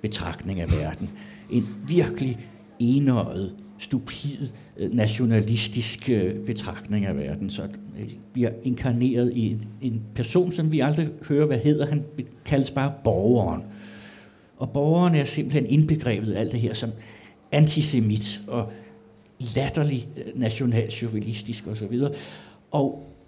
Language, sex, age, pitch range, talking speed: Danish, male, 60-79, 105-135 Hz, 115 wpm